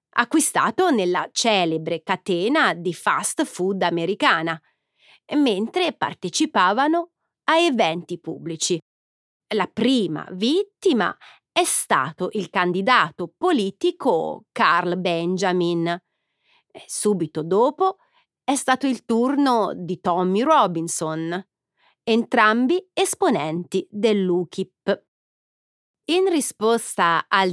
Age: 30-49